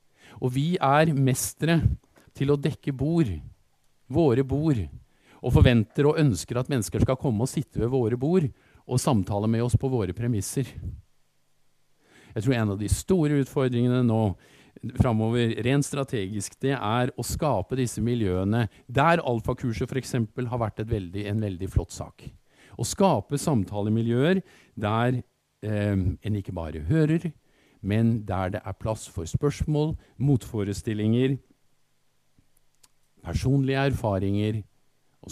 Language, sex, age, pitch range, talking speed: Danish, male, 50-69, 110-145 Hz, 140 wpm